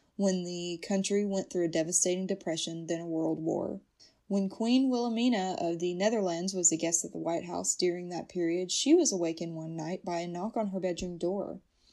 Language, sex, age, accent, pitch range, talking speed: English, female, 20-39, American, 170-210 Hz, 200 wpm